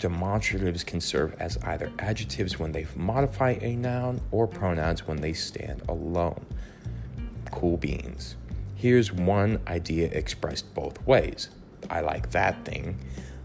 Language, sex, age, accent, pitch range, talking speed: English, male, 30-49, American, 80-100 Hz, 130 wpm